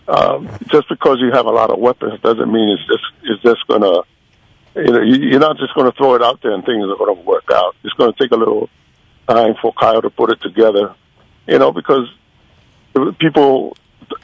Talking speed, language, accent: 215 wpm, English, American